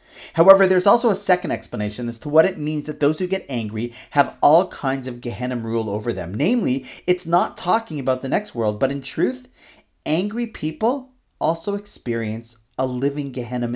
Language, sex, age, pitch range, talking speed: English, male, 40-59, 115-160 Hz, 185 wpm